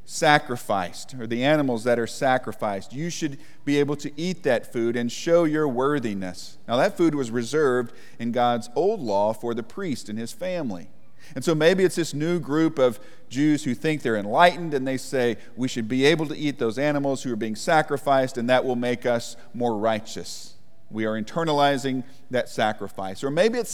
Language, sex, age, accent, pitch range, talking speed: English, male, 40-59, American, 120-155 Hz, 195 wpm